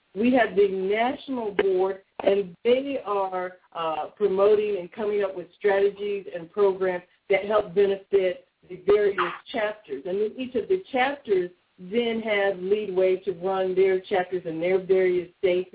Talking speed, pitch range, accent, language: 155 wpm, 180-220 Hz, American, English